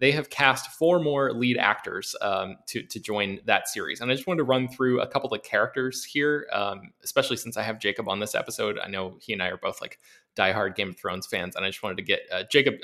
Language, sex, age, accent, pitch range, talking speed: English, male, 20-39, American, 110-140 Hz, 260 wpm